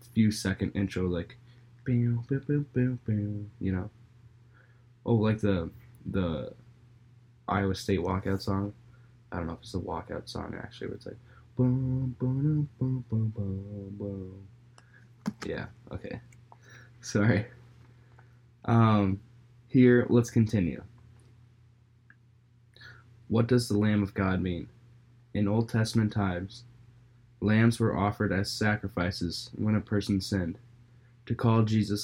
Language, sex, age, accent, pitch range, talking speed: English, male, 20-39, American, 100-120 Hz, 105 wpm